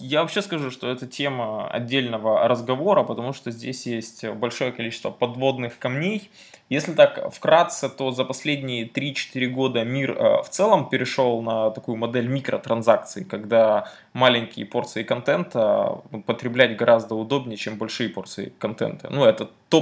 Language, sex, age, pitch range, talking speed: Russian, male, 20-39, 115-135 Hz, 140 wpm